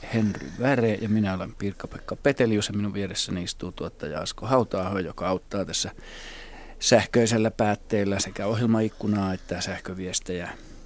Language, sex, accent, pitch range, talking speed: Finnish, male, native, 95-115 Hz, 125 wpm